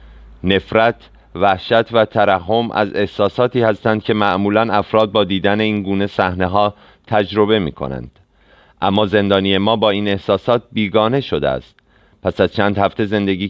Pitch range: 90-105 Hz